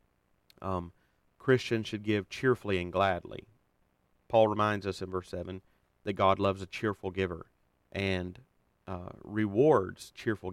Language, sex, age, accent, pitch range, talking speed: English, male, 40-59, American, 90-110 Hz, 130 wpm